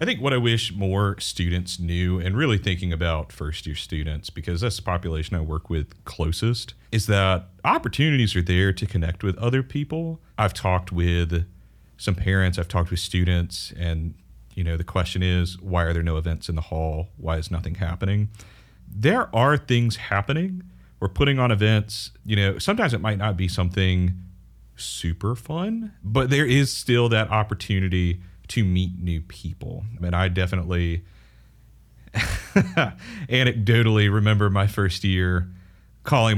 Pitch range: 85-110 Hz